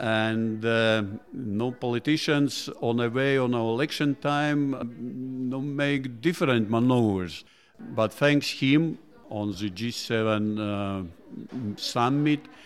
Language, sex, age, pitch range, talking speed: French, male, 50-69, 110-140 Hz, 115 wpm